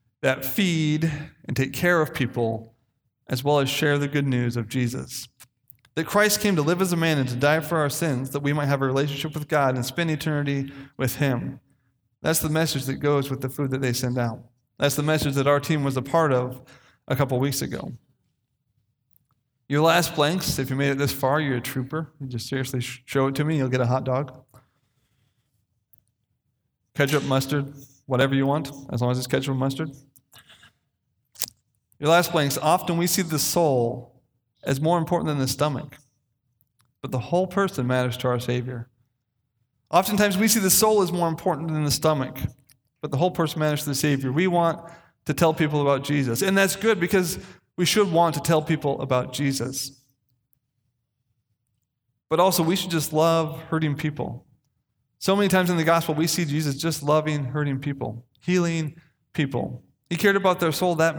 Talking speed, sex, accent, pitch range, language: 190 wpm, male, American, 125-160 Hz, English